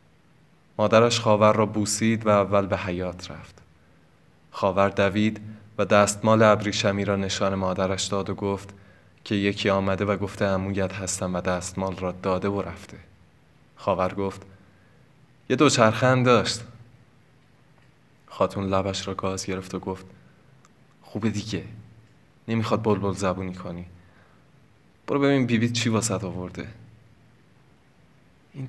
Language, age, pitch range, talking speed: Persian, 20-39, 95-120 Hz, 125 wpm